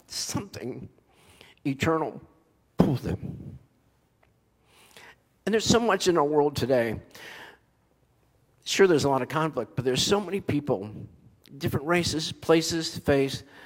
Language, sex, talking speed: English, male, 125 wpm